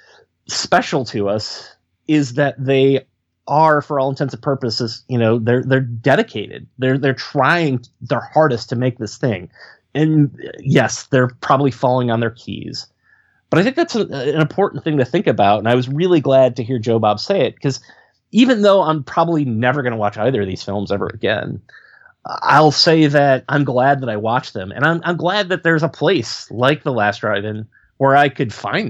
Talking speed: 200 wpm